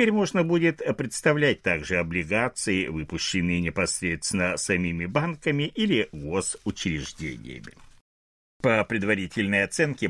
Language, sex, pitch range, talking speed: Russian, male, 95-145 Hz, 95 wpm